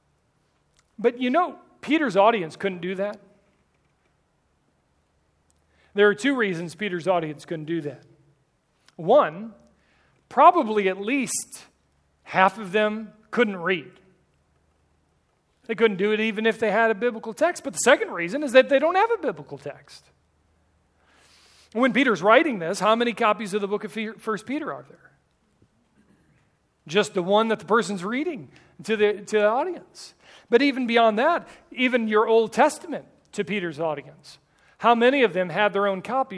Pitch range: 160-225 Hz